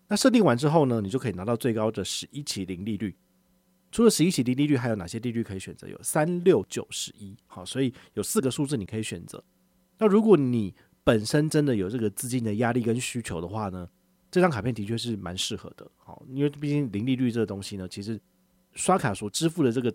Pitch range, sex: 105-145 Hz, male